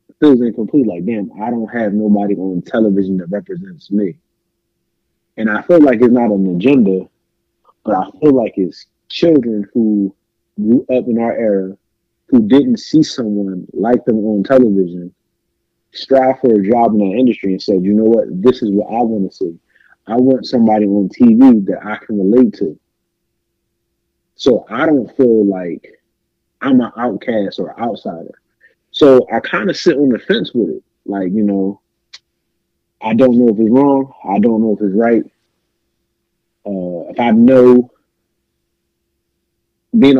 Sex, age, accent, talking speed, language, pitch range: male, 20-39, American, 165 wpm, English, 100-125 Hz